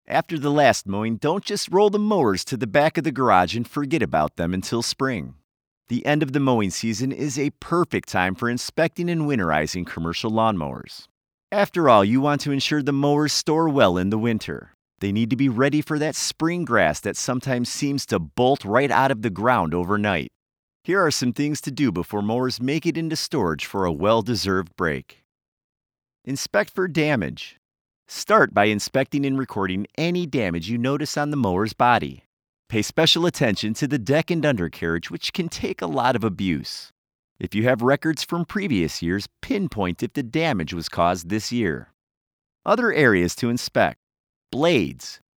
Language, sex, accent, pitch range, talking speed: English, male, American, 100-150 Hz, 180 wpm